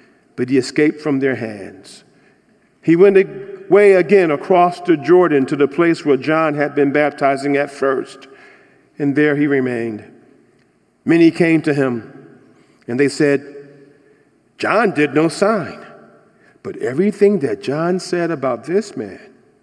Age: 50-69